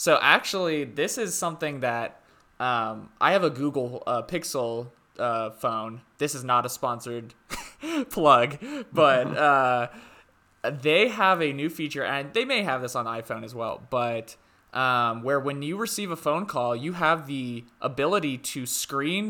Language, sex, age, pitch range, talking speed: English, male, 20-39, 120-160 Hz, 160 wpm